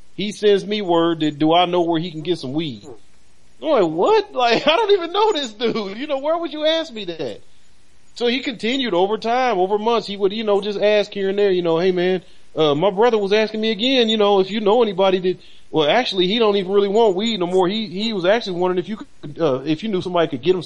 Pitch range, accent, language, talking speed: 165-235 Hz, American, English, 265 wpm